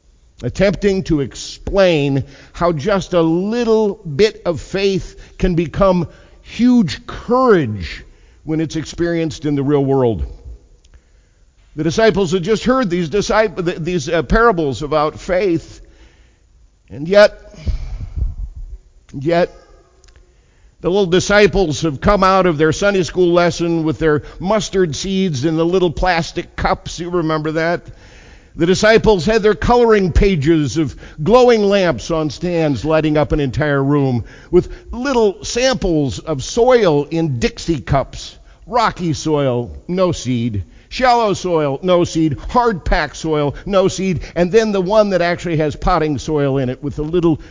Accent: American